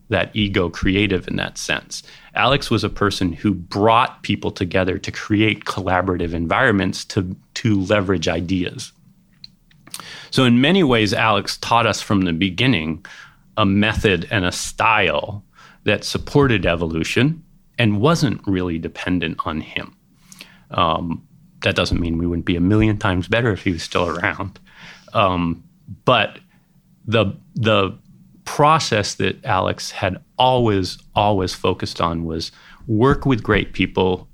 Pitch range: 90-110 Hz